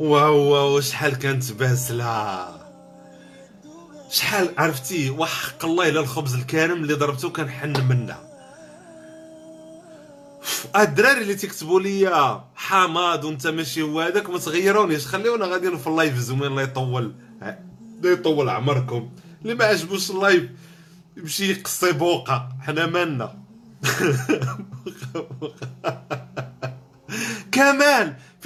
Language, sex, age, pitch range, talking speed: Arabic, male, 50-69, 135-185 Hz, 55 wpm